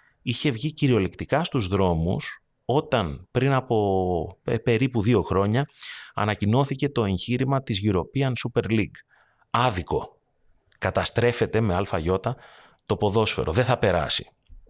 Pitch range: 95-125 Hz